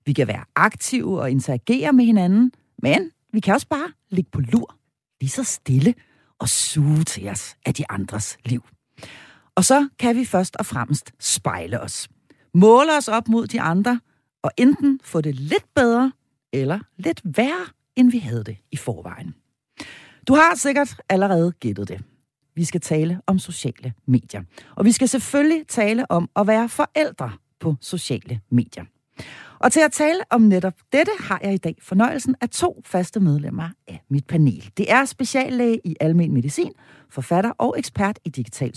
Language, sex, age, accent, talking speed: Danish, female, 40-59, native, 170 wpm